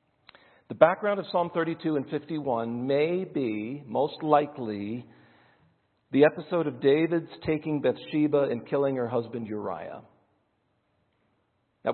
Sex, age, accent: male, 50-69, American